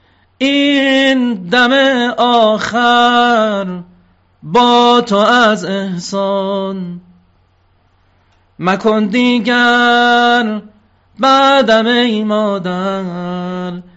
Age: 40-59